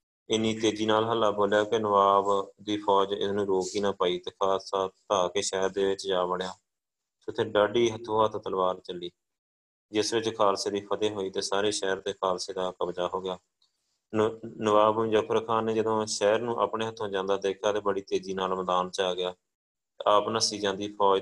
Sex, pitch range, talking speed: male, 95-110 Hz, 185 wpm